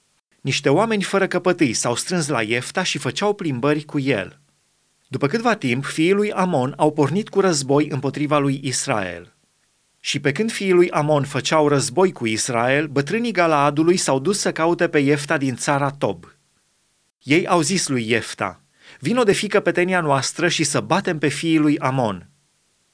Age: 30-49